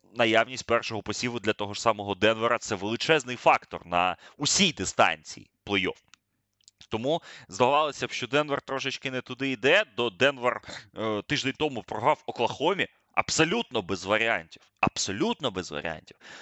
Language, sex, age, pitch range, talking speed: Ukrainian, male, 20-39, 110-145 Hz, 130 wpm